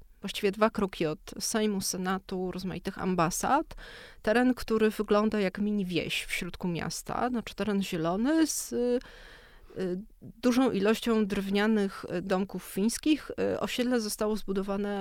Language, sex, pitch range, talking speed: Polish, female, 175-215 Hz, 110 wpm